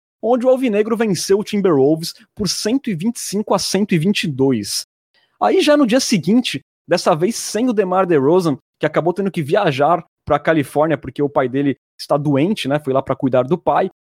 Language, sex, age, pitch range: Portuguese, male, 20-39, 150-210 Hz